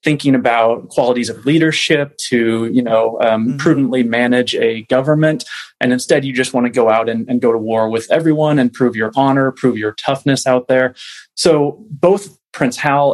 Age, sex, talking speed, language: 30-49, male, 185 wpm, English